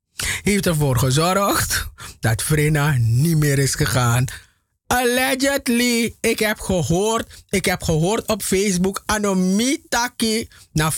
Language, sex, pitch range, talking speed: English, male, 125-200 Hz, 110 wpm